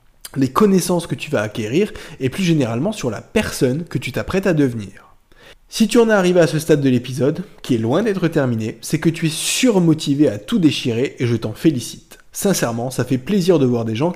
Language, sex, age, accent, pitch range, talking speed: French, male, 20-39, French, 125-170 Hz, 220 wpm